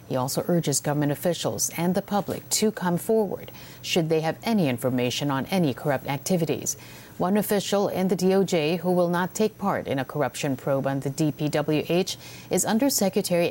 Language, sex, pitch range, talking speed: English, female, 140-175 Hz, 175 wpm